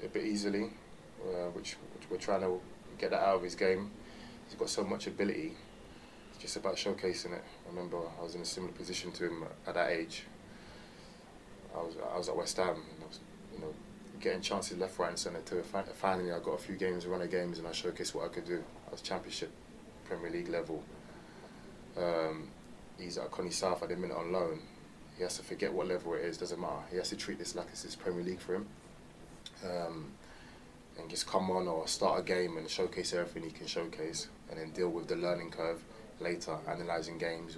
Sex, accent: male, British